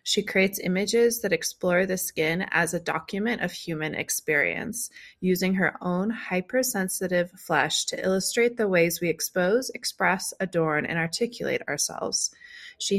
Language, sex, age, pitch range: English, female, 20-39, 170-205 Hz